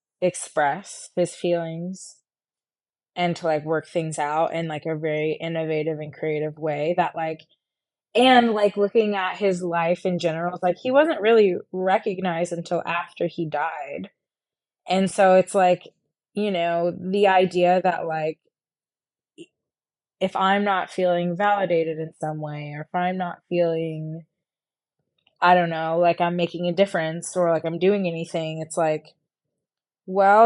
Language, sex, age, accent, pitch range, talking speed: English, female, 20-39, American, 160-185 Hz, 150 wpm